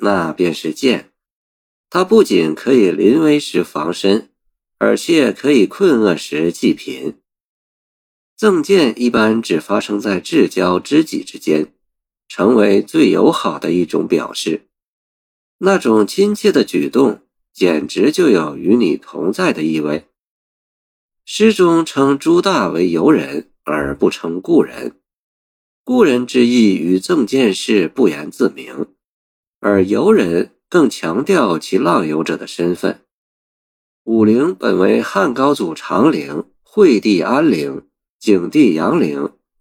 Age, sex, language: 50-69, male, Chinese